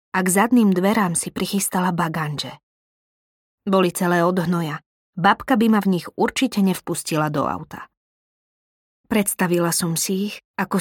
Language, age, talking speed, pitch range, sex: Slovak, 20-39, 135 wpm, 170-210 Hz, female